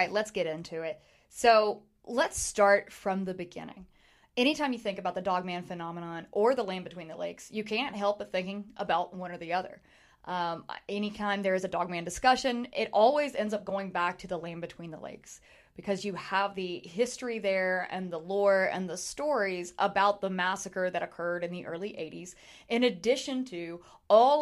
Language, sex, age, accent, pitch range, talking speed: English, female, 20-39, American, 175-210 Hz, 195 wpm